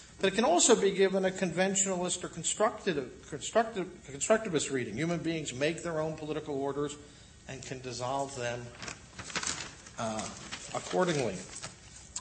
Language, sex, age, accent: English, male, 50-69, American